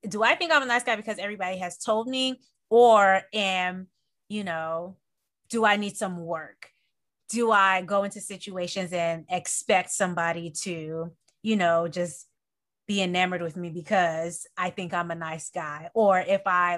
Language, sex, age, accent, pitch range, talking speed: English, female, 20-39, American, 170-220 Hz, 170 wpm